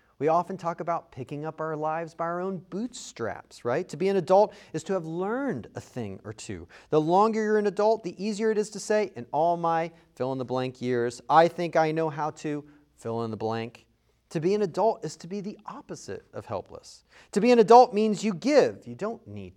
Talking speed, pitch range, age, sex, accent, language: 210 wpm, 120-180 Hz, 30-49, male, American, English